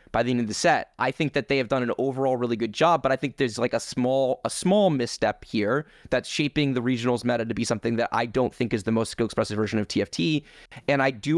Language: English